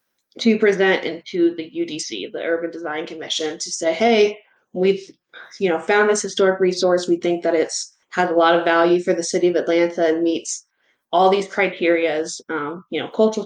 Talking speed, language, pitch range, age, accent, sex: 185 wpm, English, 165-190 Hz, 20-39, American, female